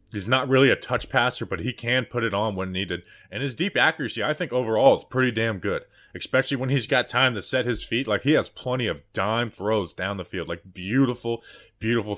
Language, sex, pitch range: English, male, 90-120 Hz